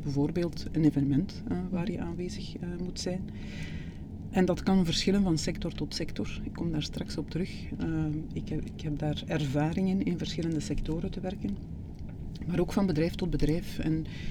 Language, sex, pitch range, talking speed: Dutch, female, 150-185 Hz, 185 wpm